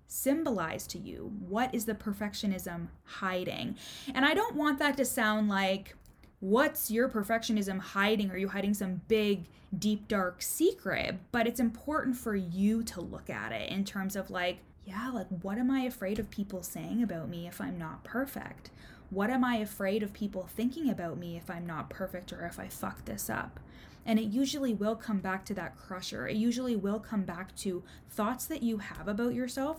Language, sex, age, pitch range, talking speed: English, female, 20-39, 190-235 Hz, 195 wpm